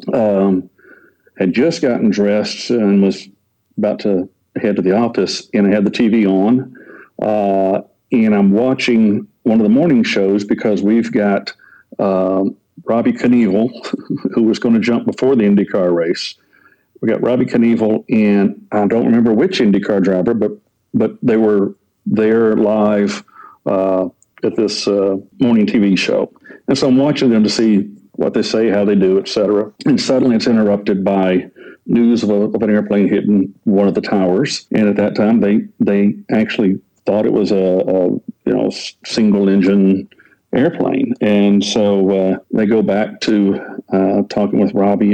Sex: male